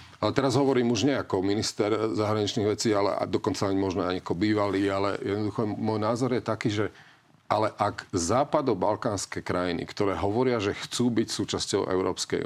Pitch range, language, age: 100-125 Hz, Slovak, 40-59